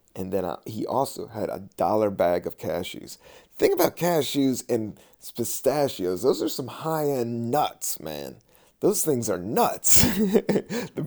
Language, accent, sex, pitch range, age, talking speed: English, American, male, 110-155 Hz, 30-49, 145 wpm